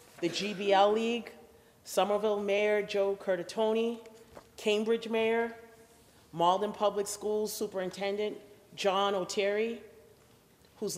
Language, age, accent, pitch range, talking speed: English, 40-59, American, 195-230 Hz, 85 wpm